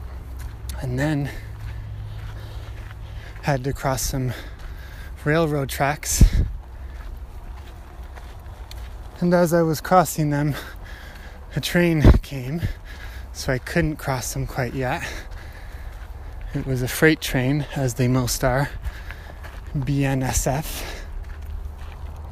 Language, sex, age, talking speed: English, male, 20-39, 90 wpm